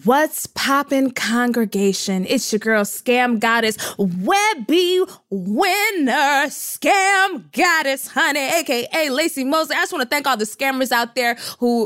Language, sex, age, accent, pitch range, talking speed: English, female, 20-39, American, 225-325 Hz, 135 wpm